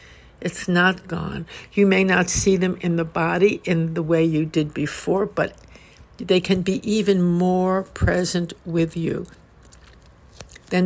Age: 60-79